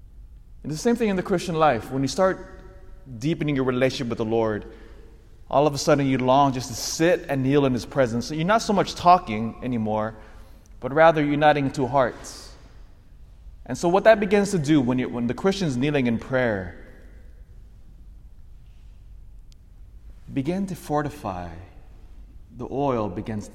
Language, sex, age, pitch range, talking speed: English, male, 30-49, 95-135 Hz, 165 wpm